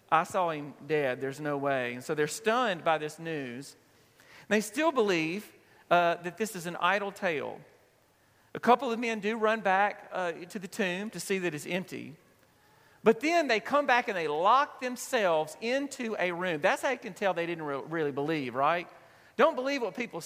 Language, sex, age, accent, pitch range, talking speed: English, male, 40-59, American, 155-215 Hz, 195 wpm